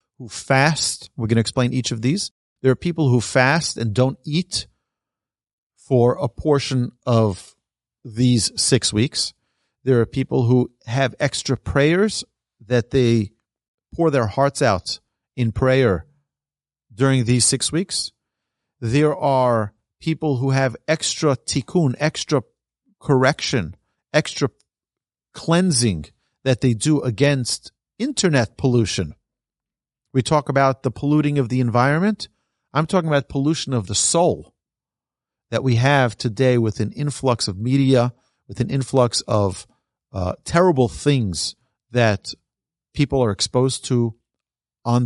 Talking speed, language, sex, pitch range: 130 wpm, English, male, 115-140 Hz